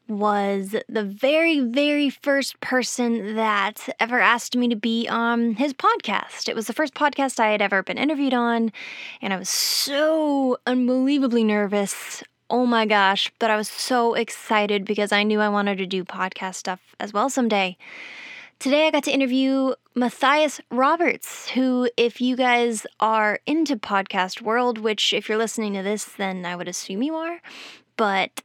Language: English